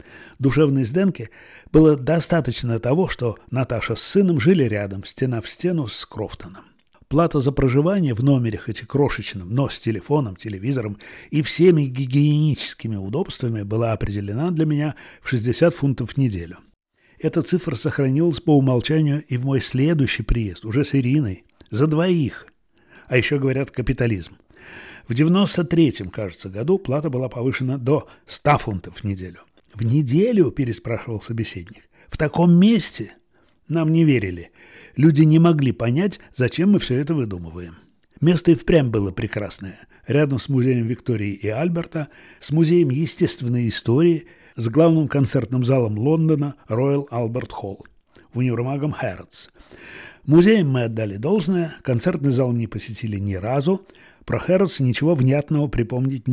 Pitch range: 115-155 Hz